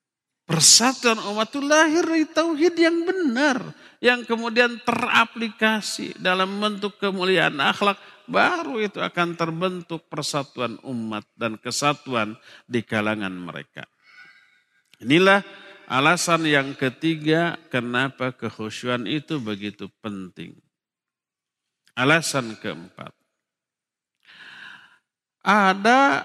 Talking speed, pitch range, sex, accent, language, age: 85 wpm, 140-220 Hz, male, native, Indonesian, 50-69